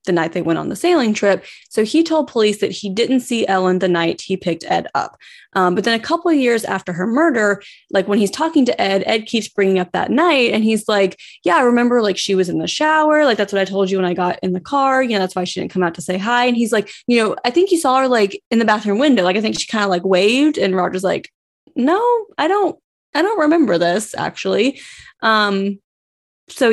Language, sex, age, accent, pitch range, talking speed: English, female, 20-39, American, 190-275 Hz, 260 wpm